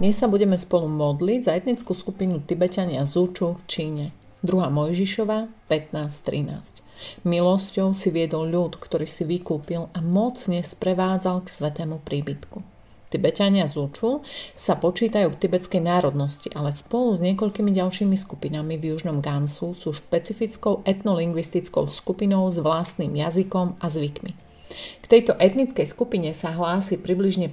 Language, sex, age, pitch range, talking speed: Slovak, female, 30-49, 160-200 Hz, 130 wpm